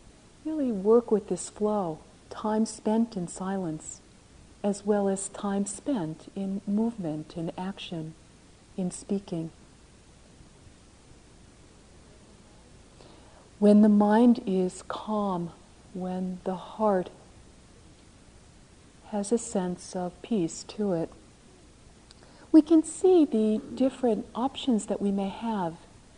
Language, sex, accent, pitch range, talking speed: English, female, American, 175-215 Hz, 105 wpm